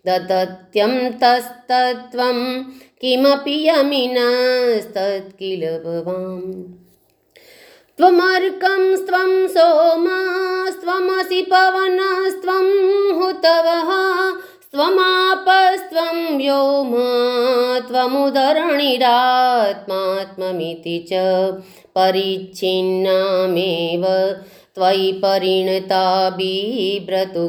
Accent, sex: native, female